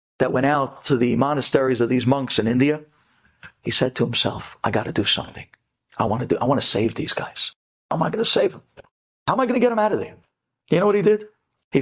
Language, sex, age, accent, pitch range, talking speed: English, male, 50-69, American, 130-160 Hz, 250 wpm